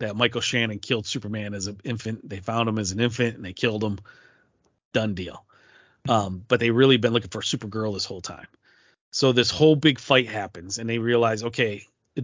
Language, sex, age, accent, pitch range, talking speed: English, male, 40-59, American, 110-130 Hz, 205 wpm